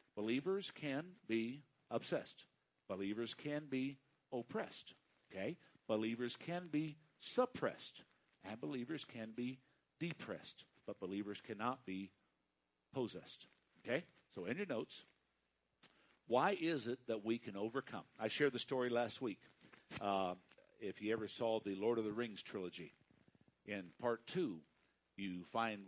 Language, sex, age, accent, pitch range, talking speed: English, male, 60-79, American, 100-135 Hz, 130 wpm